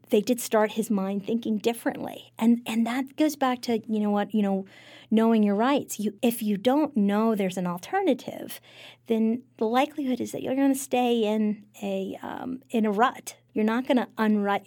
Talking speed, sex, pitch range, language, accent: 190 wpm, female, 200-235 Hz, English, American